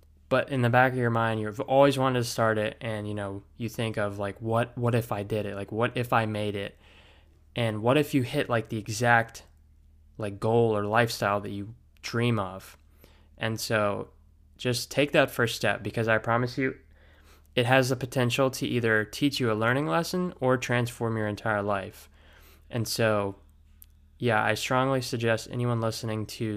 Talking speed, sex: 190 wpm, male